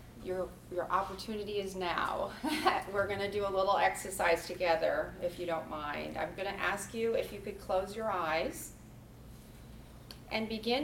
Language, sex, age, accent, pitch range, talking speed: English, female, 30-49, American, 175-220 Hz, 165 wpm